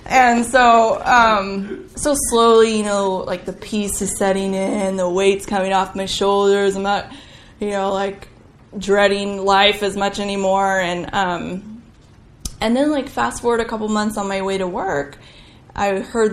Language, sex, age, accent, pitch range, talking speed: English, female, 10-29, American, 190-230 Hz, 170 wpm